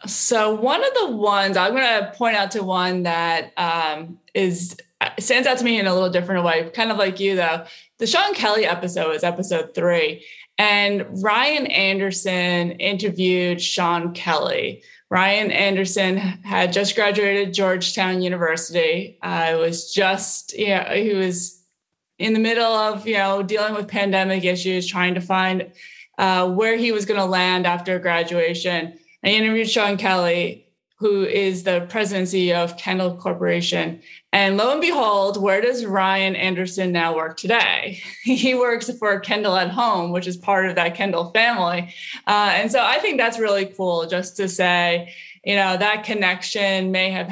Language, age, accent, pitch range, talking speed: English, 20-39, American, 180-210 Hz, 165 wpm